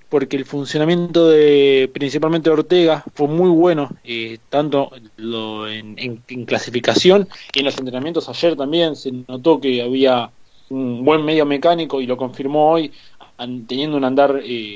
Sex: male